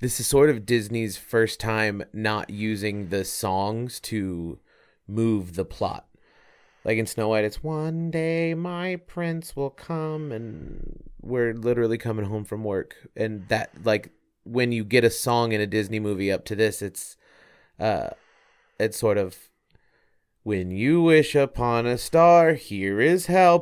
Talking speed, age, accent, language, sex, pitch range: 160 wpm, 30-49, American, English, male, 100-120 Hz